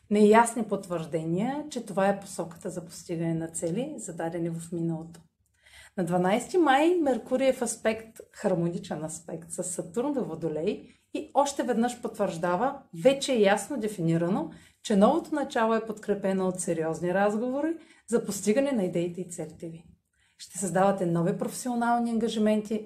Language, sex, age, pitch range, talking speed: Bulgarian, female, 40-59, 175-245 Hz, 140 wpm